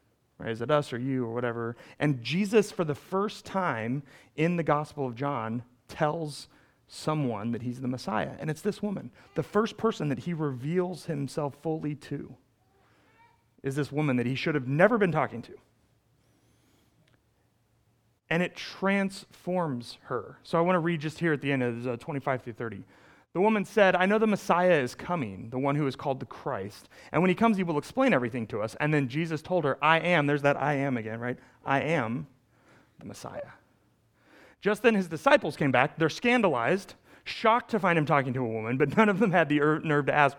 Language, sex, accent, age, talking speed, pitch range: English, male, American, 30-49, 200 wpm, 125-180 Hz